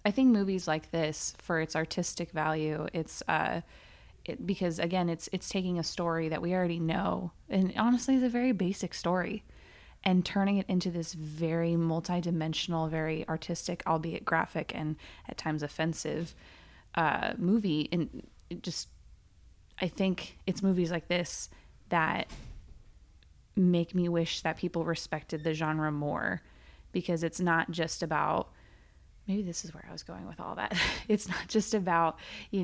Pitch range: 155-180 Hz